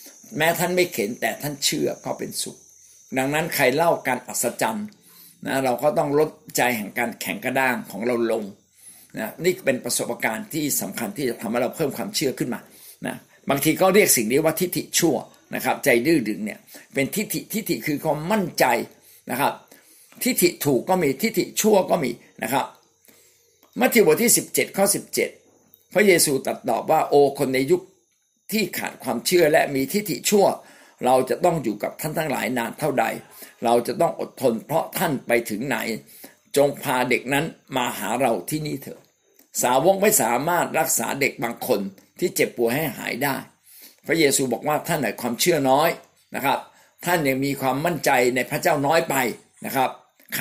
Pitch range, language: 135-200 Hz, Thai